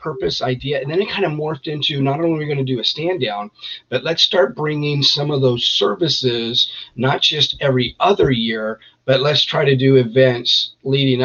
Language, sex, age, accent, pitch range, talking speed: English, male, 40-59, American, 120-140 Hz, 210 wpm